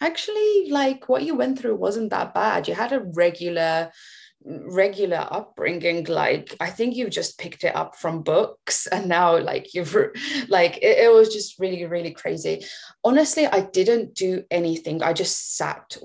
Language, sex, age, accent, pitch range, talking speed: English, female, 20-39, British, 170-205 Hz, 170 wpm